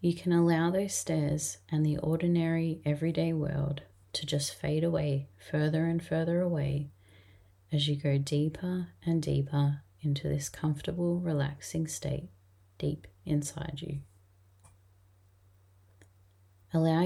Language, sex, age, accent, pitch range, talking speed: English, female, 30-49, Australian, 95-155 Hz, 115 wpm